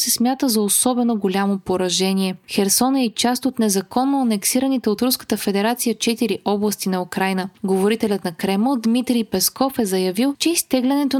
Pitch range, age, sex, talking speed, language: 200-260 Hz, 20-39, female, 155 wpm, Bulgarian